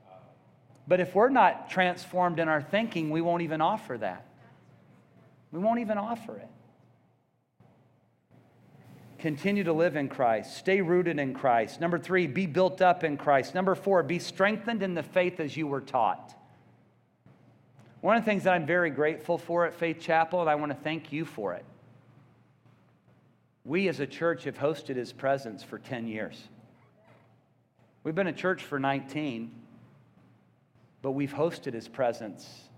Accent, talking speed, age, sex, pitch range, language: American, 155 wpm, 40-59, male, 130-165 Hz, English